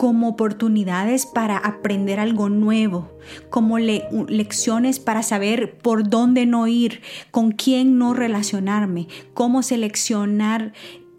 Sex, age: female, 30-49